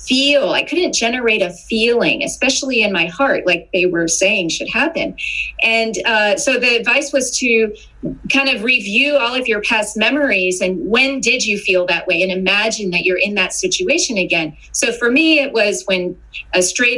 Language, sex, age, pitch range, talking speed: English, female, 30-49, 195-270 Hz, 190 wpm